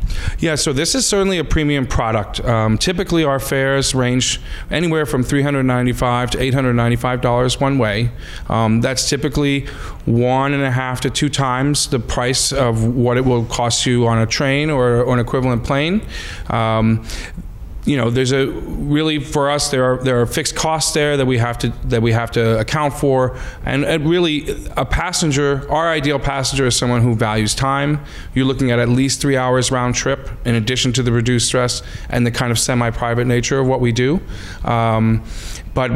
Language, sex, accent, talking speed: English, male, American, 185 wpm